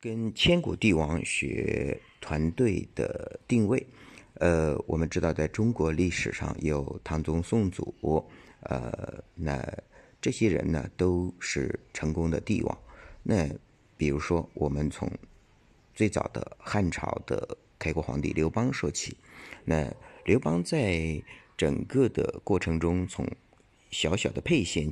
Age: 50-69